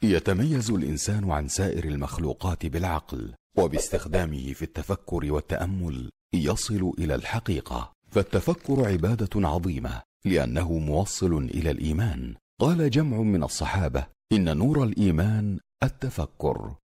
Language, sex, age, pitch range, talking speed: Arabic, male, 50-69, 85-115 Hz, 100 wpm